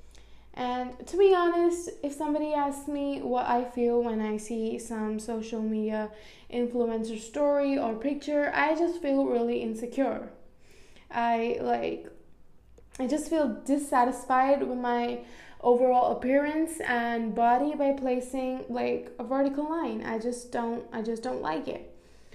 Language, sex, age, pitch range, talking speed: English, female, 10-29, 230-275 Hz, 140 wpm